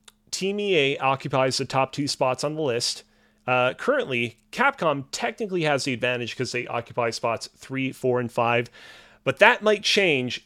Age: 30-49